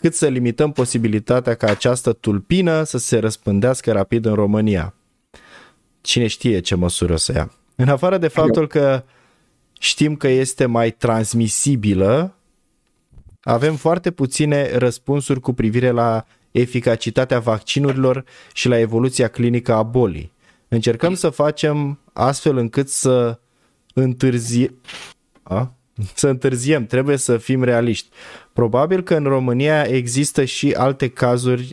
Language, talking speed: Romanian, 125 wpm